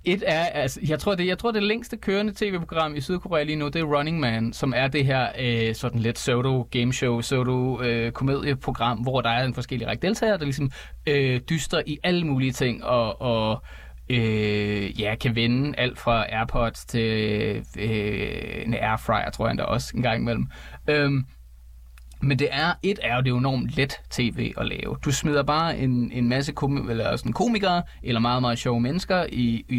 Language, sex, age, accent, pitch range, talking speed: Danish, male, 20-39, native, 115-155 Hz, 190 wpm